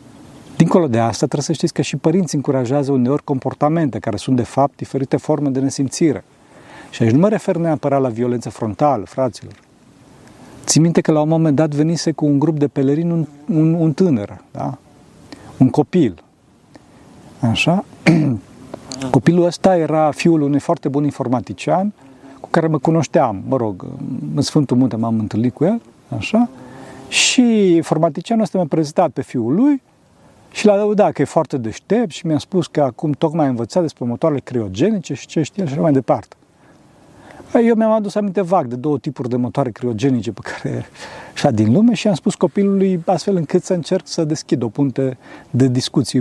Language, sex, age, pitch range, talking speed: Romanian, male, 40-59, 130-170 Hz, 175 wpm